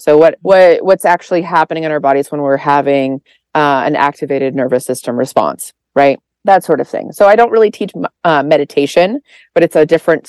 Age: 30-49